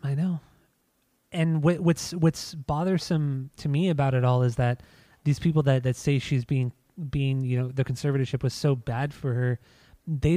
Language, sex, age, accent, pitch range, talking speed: English, male, 20-39, American, 130-155 Hz, 180 wpm